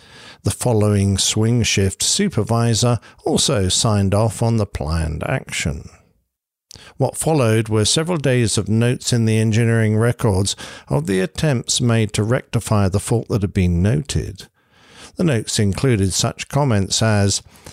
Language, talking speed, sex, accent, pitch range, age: English, 140 wpm, male, British, 105-130 Hz, 50-69